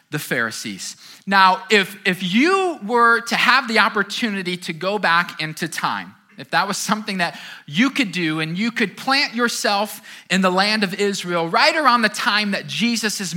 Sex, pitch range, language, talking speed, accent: male, 180-240 Hz, English, 180 wpm, American